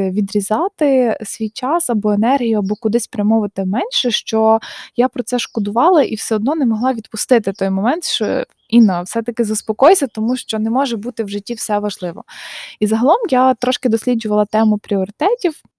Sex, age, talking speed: female, 20-39, 160 wpm